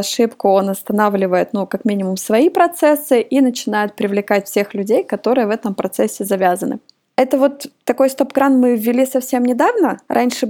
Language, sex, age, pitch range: Russian, female, 20-39, 205-260 Hz